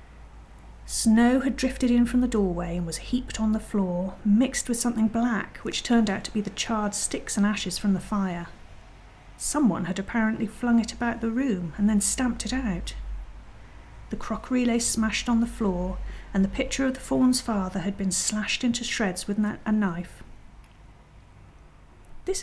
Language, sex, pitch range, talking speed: English, female, 185-245 Hz, 175 wpm